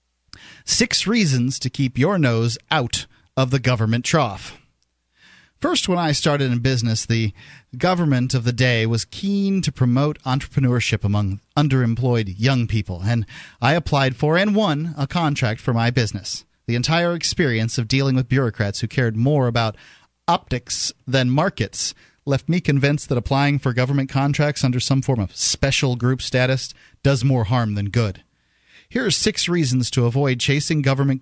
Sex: male